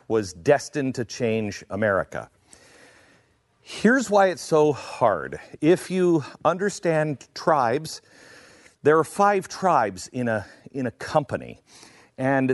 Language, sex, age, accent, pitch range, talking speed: English, male, 40-59, American, 115-165 Hz, 115 wpm